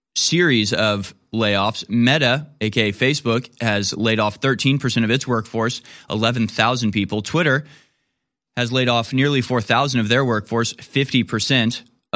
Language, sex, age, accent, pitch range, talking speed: English, male, 20-39, American, 110-135 Hz, 125 wpm